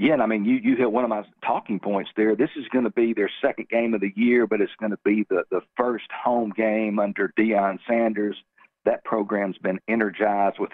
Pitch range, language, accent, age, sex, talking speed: 100-115 Hz, English, American, 50-69, male, 235 wpm